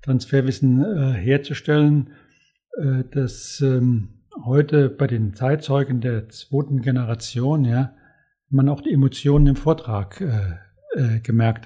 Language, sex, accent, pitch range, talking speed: German, male, German, 125-150 Hz, 120 wpm